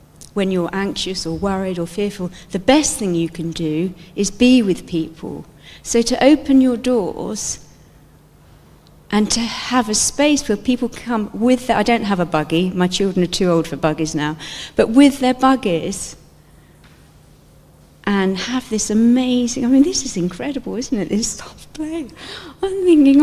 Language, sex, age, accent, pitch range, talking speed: English, female, 40-59, British, 180-255 Hz, 160 wpm